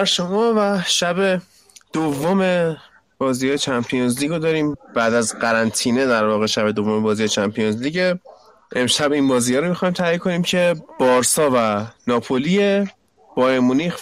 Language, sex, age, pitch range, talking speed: Persian, male, 30-49, 135-185 Hz, 135 wpm